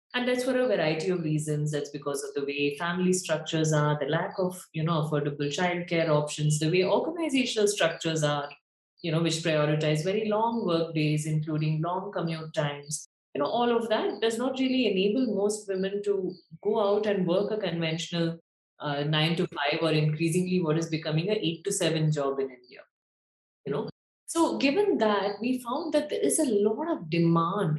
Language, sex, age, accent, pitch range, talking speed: English, female, 30-49, Indian, 155-210 Hz, 190 wpm